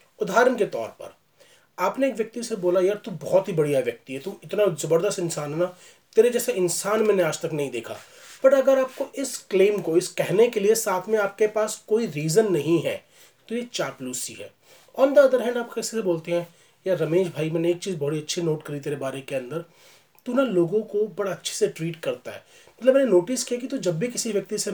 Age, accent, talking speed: 30-49, native, 130 wpm